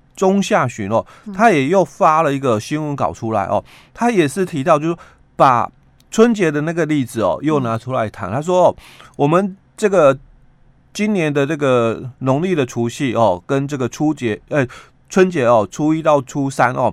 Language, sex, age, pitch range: Chinese, male, 30-49, 130-185 Hz